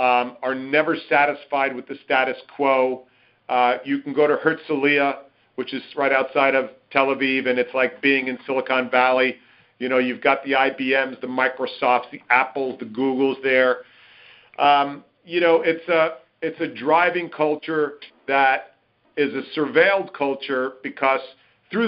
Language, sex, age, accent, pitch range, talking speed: English, male, 50-69, American, 130-150 Hz, 155 wpm